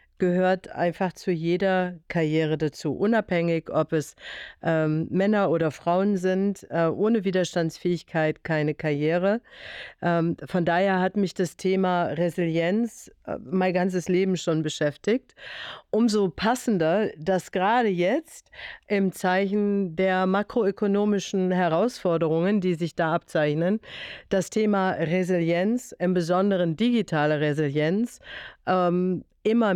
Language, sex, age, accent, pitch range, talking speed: German, female, 50-69, German, 175-205 Hz, 115 wpm